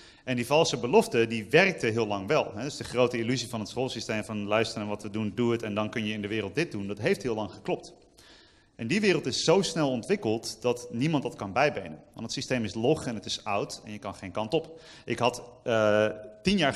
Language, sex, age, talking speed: Dutch, male, 30-49, 255 wpm